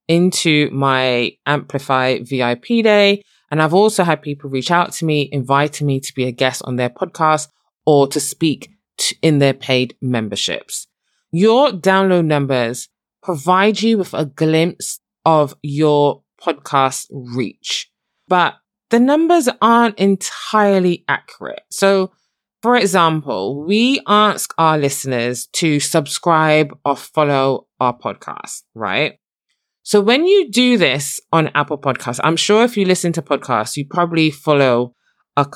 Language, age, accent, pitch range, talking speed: English, 20-39, British, 135-190 Hz, 140 wpm